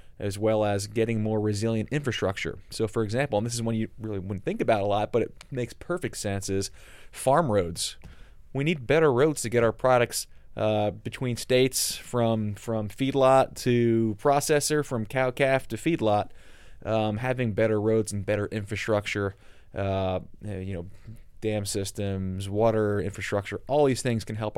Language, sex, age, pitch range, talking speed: English, male, 20-39, 100-120 Hz, 170 wpm